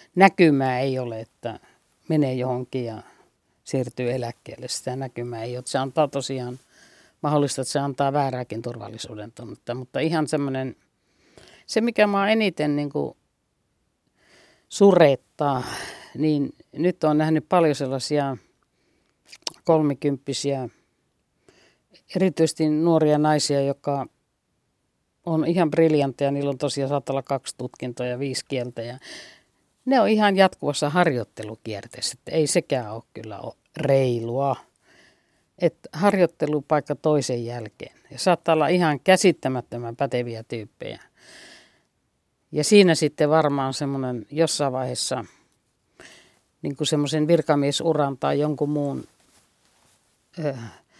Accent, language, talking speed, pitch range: native, Finnish, 105 wpm, 125-155 Hz